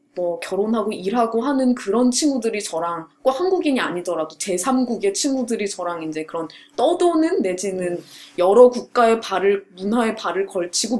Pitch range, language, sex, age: 190-265 Hz, Korean, female, 20-39